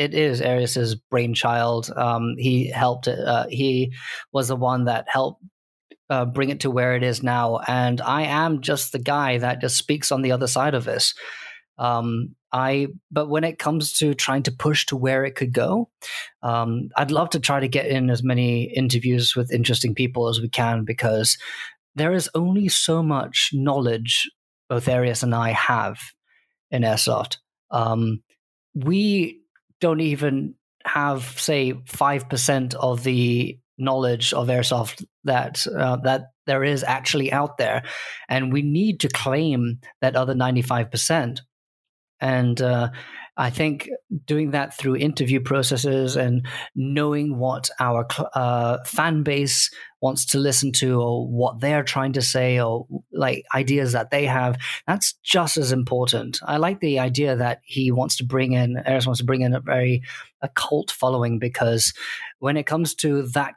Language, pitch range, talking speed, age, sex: English, 125-145 Hz, 165 wpm, 20-39, male